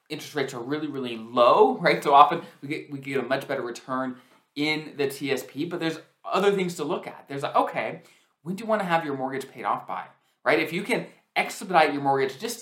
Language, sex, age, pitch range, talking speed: English, male, 20-39, 130-170 Hz, 235 wpm